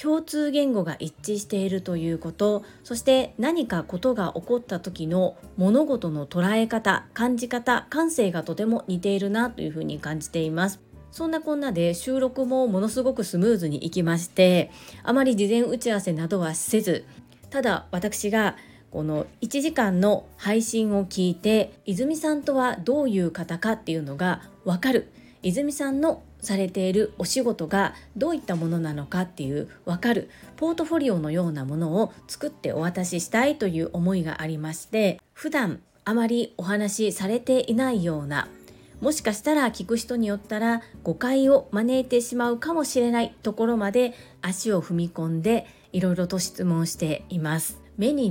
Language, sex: Japanese, female